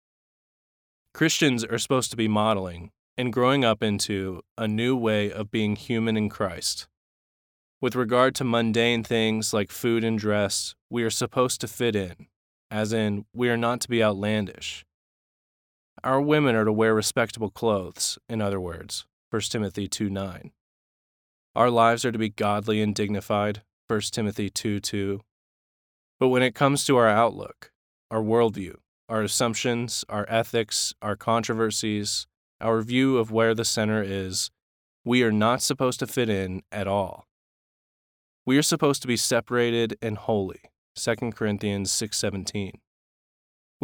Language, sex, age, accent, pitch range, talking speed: English, male, 20-39, American, 100-120 Hz, 145 wpm